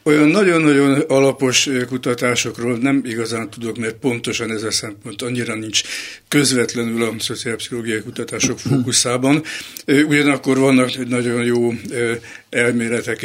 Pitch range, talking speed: 120-135 Hz, 110 wpm